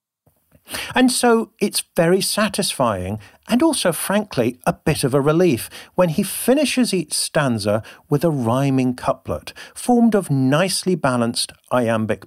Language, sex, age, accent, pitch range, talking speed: English, male, 50-69, British, 120-205 Hz, 130 wpm